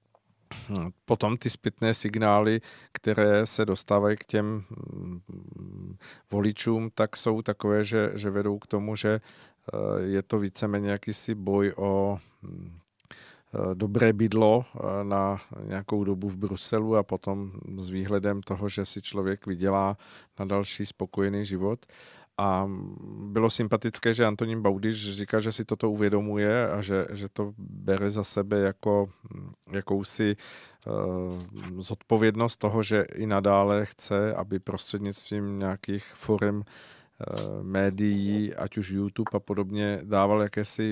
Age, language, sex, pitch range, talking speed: 50-69, Czech, male, 100-115 Hz, 125 wpm